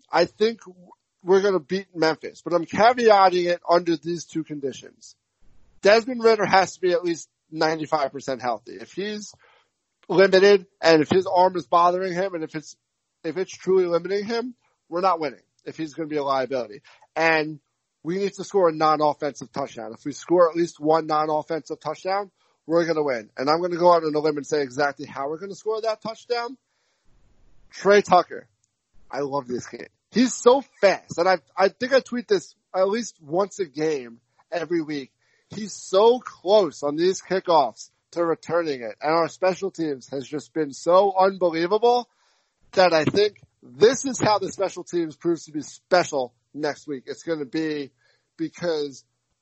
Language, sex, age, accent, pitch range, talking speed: English, male, 30-49, American, 145-190 Hz, 185 wpm